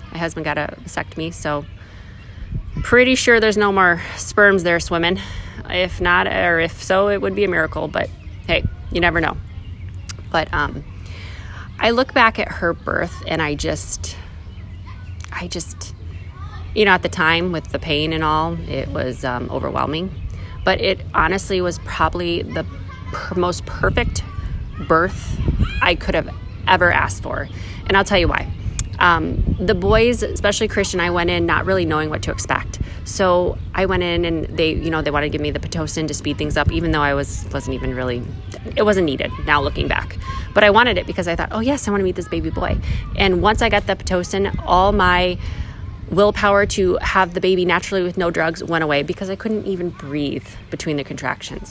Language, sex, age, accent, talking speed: English, female, 30-49, American, 195 wpm